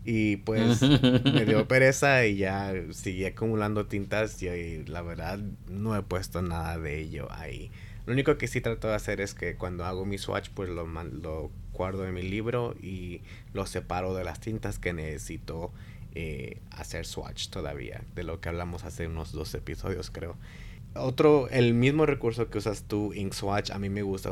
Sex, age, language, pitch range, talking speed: male, 30-49, Spanish, 90-110 Hz, 180 wpm